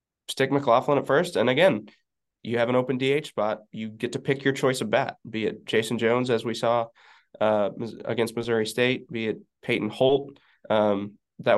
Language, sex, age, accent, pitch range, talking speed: English, male, 20-39, American, 105-120 Hz, 190 wpm